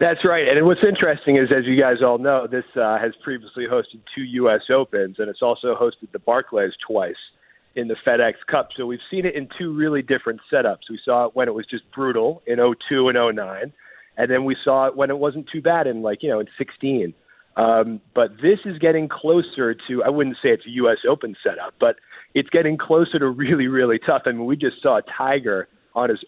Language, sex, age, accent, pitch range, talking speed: English, male, 40-59, American, 125-170 Hz, 230 wpm